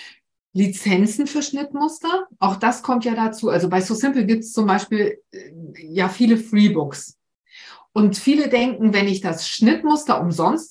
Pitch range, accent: 185-245 Hz, German